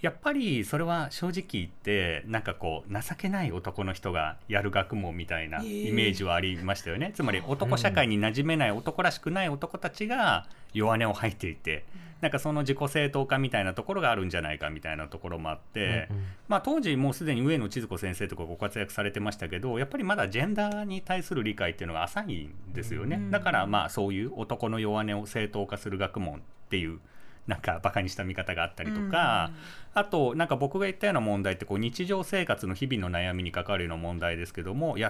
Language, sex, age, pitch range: Japanese, male, 40-59, 95-150 Hz